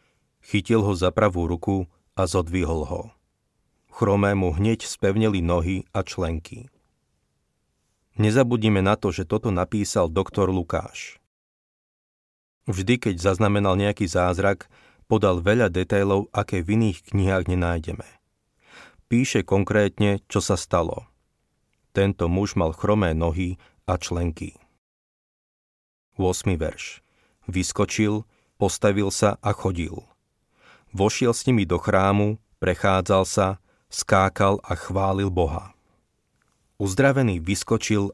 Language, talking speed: Slovak, 105 wpm